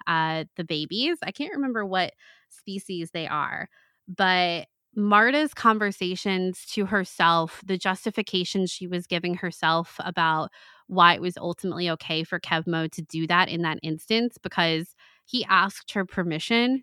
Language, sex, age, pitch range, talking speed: English, female, 20-39, 165-195 Hz, 145 wpm